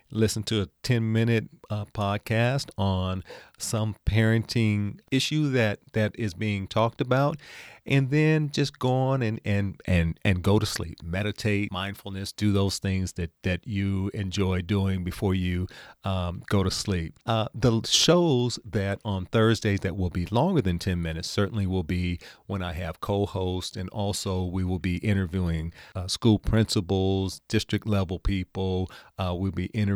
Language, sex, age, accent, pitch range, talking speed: English, male, 40-59, American, 95-115 Hz, 160 wpm